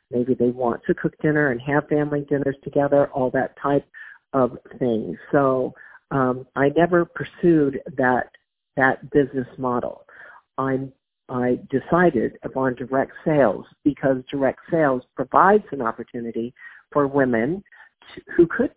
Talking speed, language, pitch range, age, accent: 135 wpm, English, 130-155 Hz, 50-69, American